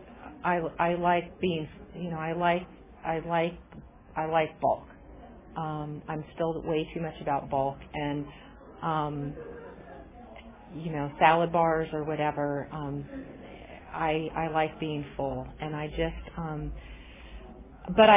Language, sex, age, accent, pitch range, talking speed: English, female, 40-59, American, 145-170 Hz, 130 wpm